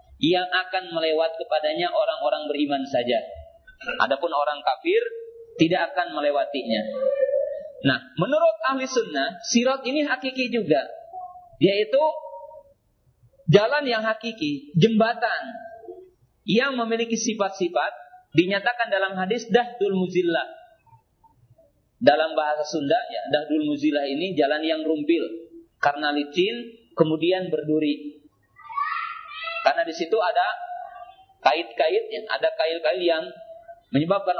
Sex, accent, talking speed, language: male, native, 100 wpm, Indonesian